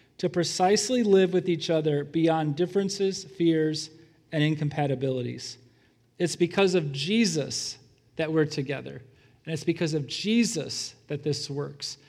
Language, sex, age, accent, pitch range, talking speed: English, male, 40-59, American, 150-200 Hz, 130 wpm